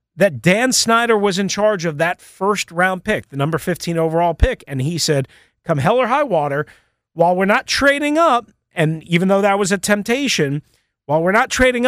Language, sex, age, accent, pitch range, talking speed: English, male, 40-59, American, 150-205 Hz, 200 wpm